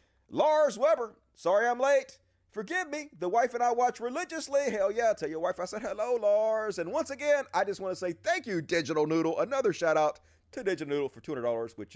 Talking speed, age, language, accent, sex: 215 wpm, 30-49, English, American, male